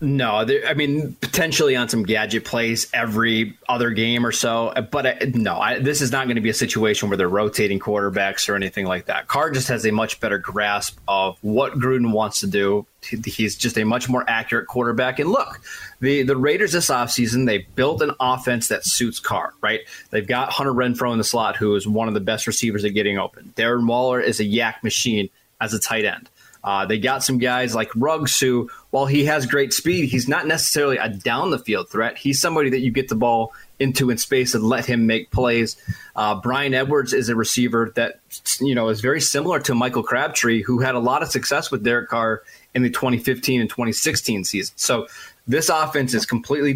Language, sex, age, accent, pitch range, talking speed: English, male, 20-39, American, 110-130 Hz, 215 wpm